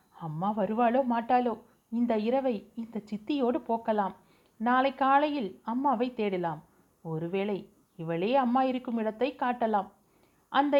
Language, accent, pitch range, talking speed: Tamil, native, 185-255 Hz, 105 wpm